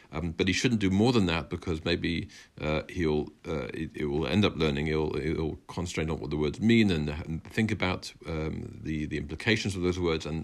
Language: English